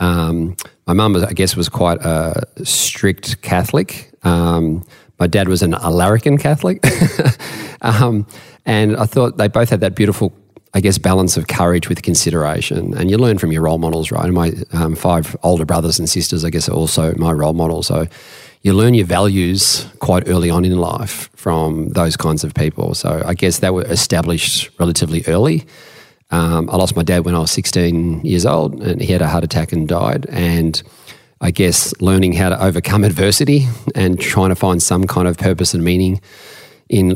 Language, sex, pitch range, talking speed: English, male, 85-100 Hz, 190 wpm